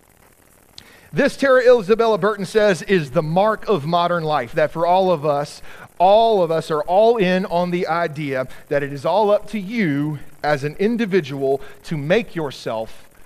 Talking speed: 170 wpm